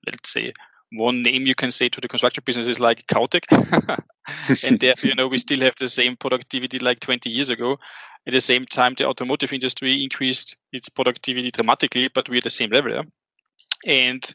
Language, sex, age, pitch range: English, male, 20-39, 130-145 Hz